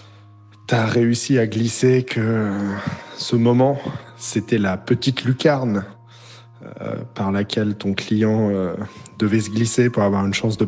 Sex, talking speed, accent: male, 140 wpm, French